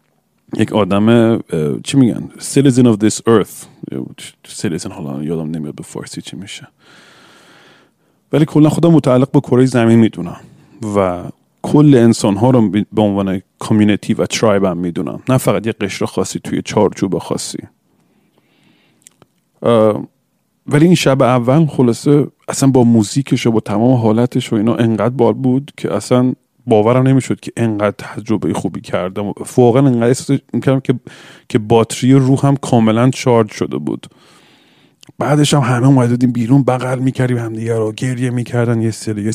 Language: Persian